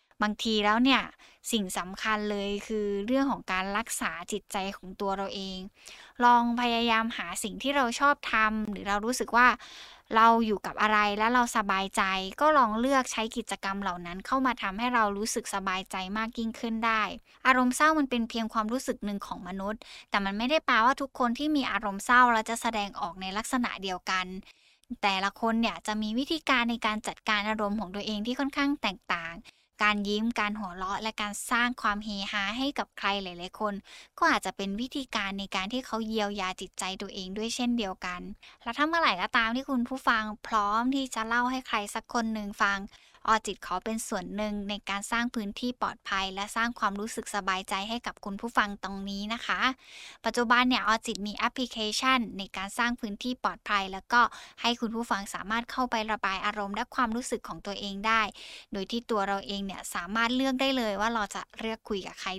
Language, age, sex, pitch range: Thai, 10-29, female, 200-240 Hz